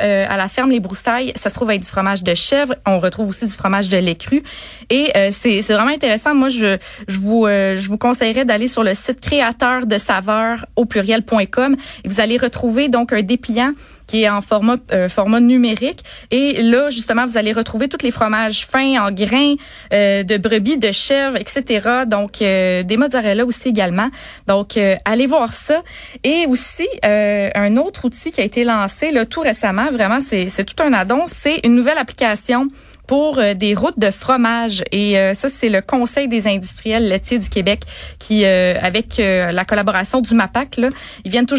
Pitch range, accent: 210-265 Hz, Canadian